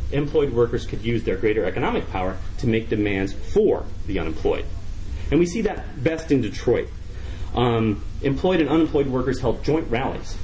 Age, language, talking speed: 30-49, English, 165 wpm